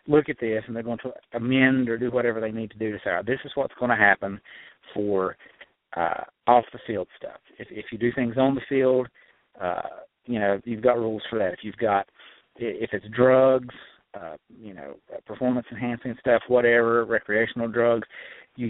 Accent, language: American, English